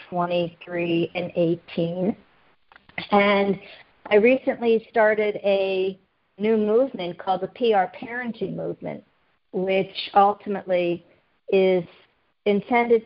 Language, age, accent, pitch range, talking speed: English, 50-69, American, 175-205 Hz, 85 wpm